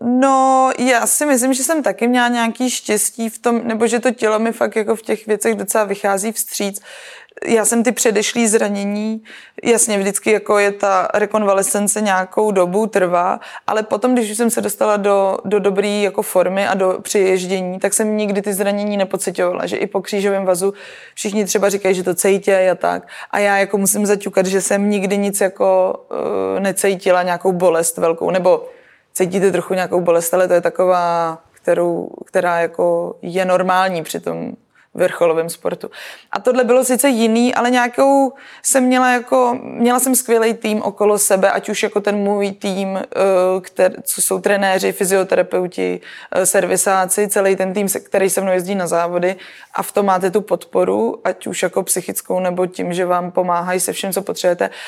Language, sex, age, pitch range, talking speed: Czech, female, 20-39, 185-215 Hz, 170 wpm